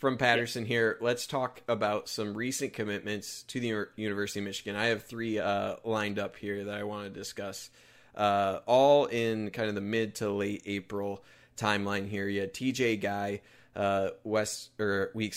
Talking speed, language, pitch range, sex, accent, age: 170 wpm, English, 100-115 Hz, male, American, 20-39